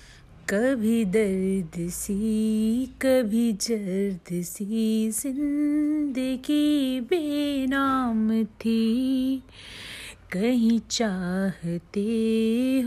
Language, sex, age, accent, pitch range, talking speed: Hindi, female, 30-49, native, 220-305 Hz, 50 wpm